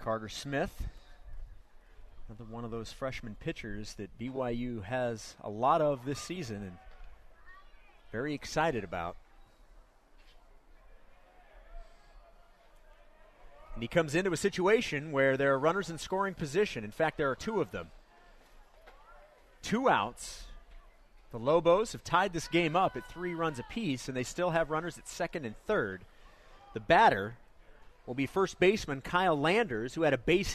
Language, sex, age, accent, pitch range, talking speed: English, male, 30-49, American, 100-165 Hz, 145 wpm